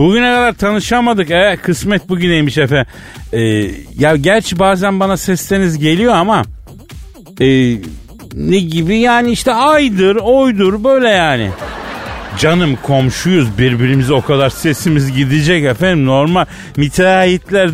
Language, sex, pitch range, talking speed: Turkish, male, 140-195 Hz, 115 wpm